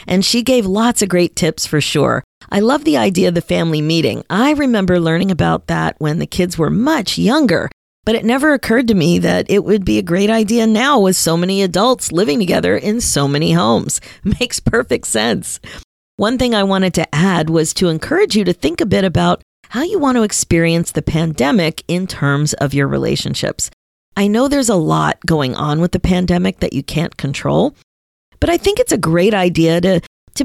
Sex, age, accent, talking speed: female, 40-59, American, 205 wpm